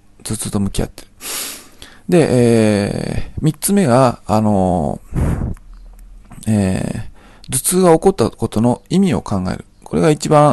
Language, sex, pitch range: Japanese, male, 100-135 Hz